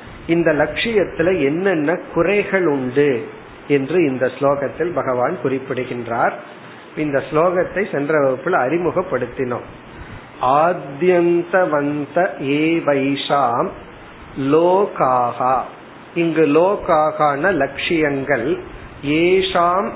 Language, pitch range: Tamil, 145-180 Hz